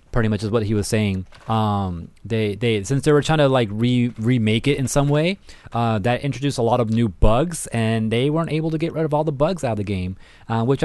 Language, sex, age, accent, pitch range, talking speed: English, male, 20-39, American, 110-145 Hz, 260 wpm